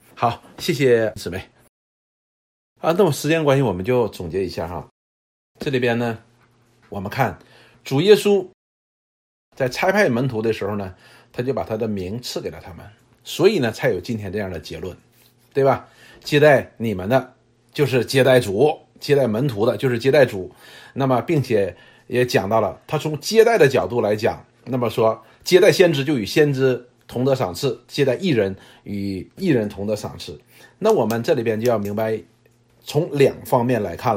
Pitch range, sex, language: 110-145 Hz, male, Chinese